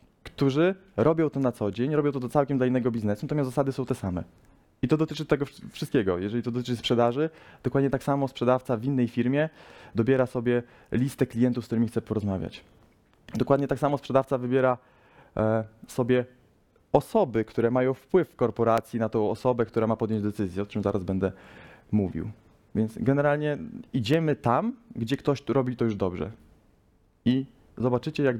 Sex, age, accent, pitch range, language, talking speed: male, 20-39, native, 115-145 Hz, Polish, 170 wpm